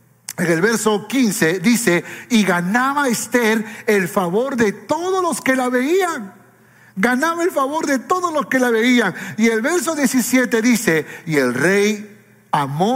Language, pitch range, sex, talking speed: Spanish, 180-245 Hz, male, 155 wpm